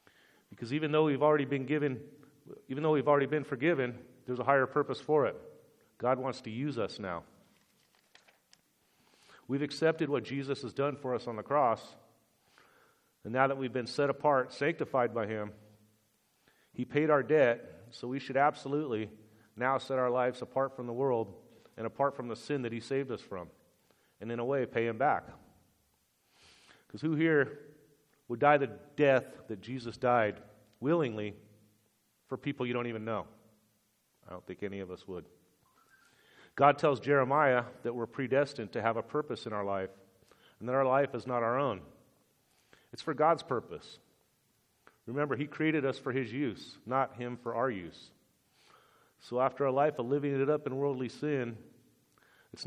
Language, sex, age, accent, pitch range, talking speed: English, male, 40-59, American, 115-145 Hz, 175 wpm